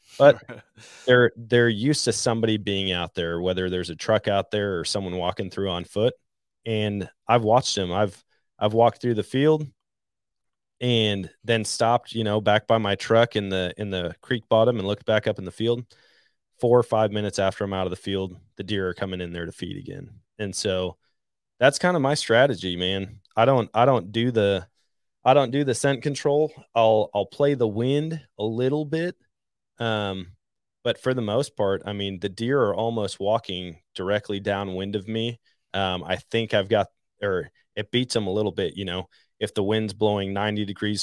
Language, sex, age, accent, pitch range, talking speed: English, male, 20-39, American, 95-120 Hz, 200 wpm